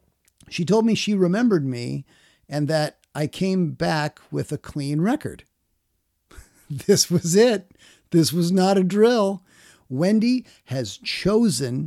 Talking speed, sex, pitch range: 130 wpm, male, 120-180 Hz